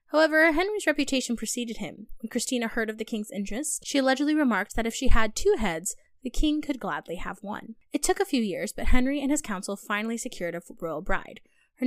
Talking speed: 215 wpm